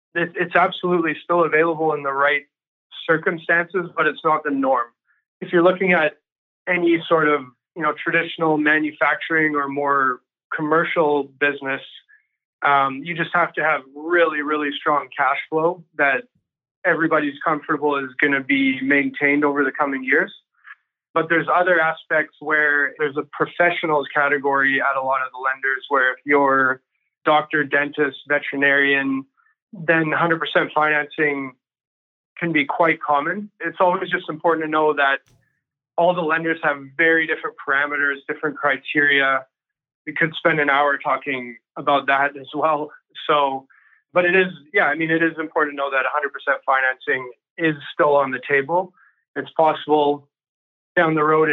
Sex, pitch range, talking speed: male, 140-165 Hz, 150 wpm